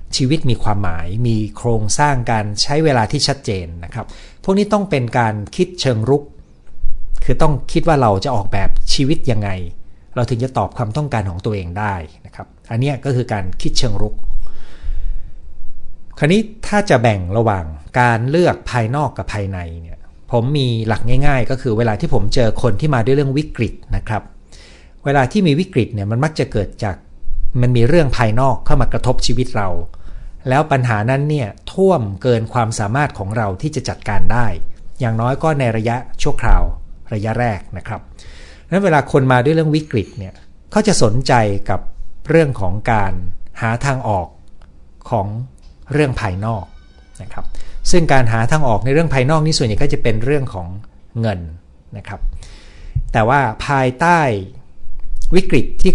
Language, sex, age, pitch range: Thai, male, 60-79, 90-135 Hz